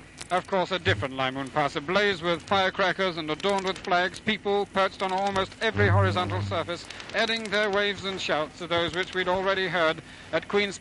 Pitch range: 155-195 Hz